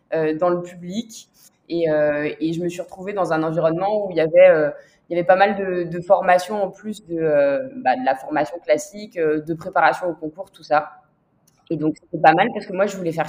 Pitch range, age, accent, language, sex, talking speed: 155-200 Hz, 20-39, French, French, female, 235 wpm